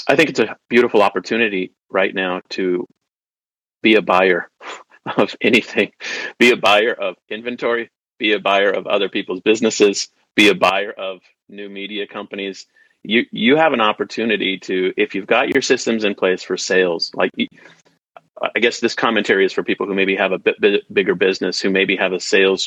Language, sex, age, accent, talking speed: English, male, 30-49, American, 180 wpm